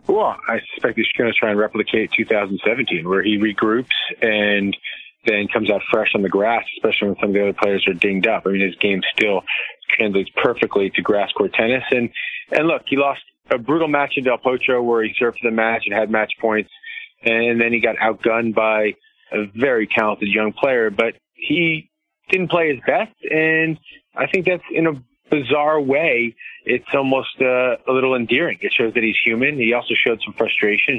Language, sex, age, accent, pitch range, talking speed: English, male, 30-49, American, 105-140 Hz, 200 wpm